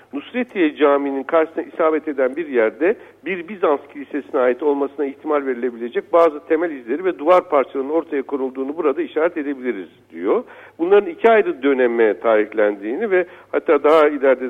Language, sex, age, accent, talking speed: Turkish, male, 60-79, native, 145 wpm